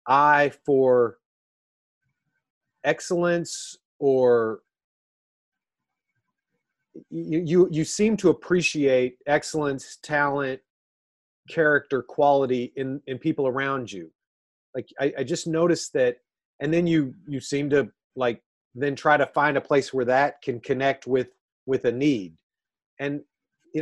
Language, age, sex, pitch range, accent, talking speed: English, 30-49, male, 135-190 Hz, American, 120 wpm